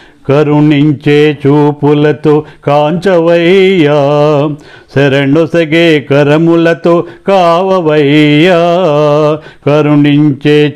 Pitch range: 150-200 Hz